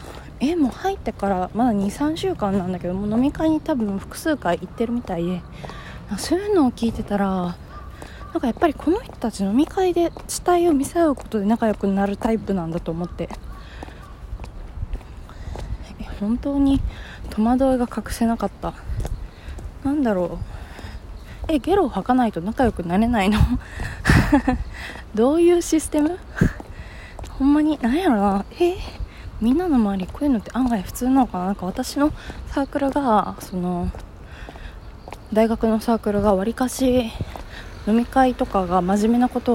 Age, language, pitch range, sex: 20-39, Japanese, 190-275 Hz, female